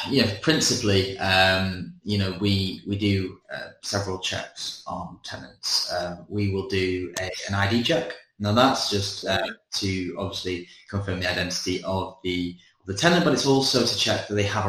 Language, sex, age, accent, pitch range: Chinese, male, 20-39, British, 95-105 Hz